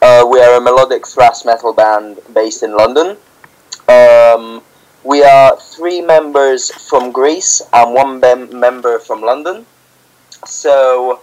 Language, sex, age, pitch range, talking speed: English, male, 20-39, 120-145 Hz, 130 wpm